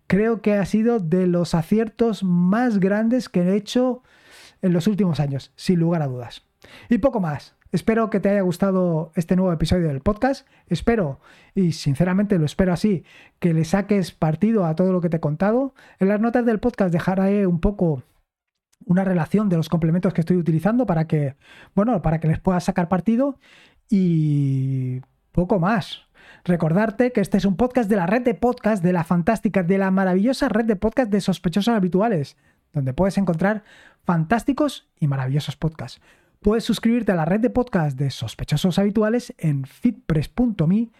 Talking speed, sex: 175 wpm, male